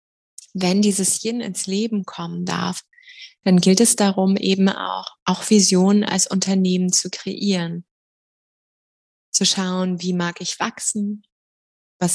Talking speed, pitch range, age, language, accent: 130 wpm, 175-205 Hz, 20-39, German, German